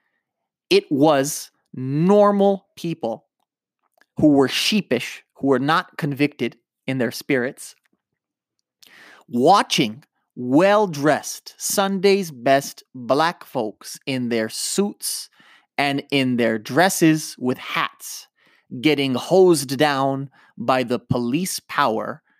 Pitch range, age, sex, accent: 120-155 Hz, 30-49, male, American